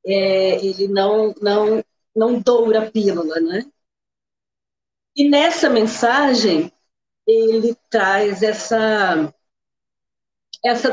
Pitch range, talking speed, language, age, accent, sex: 200-250 Hz, 90 wpm, Portuguese, 40-59, Brazilian, female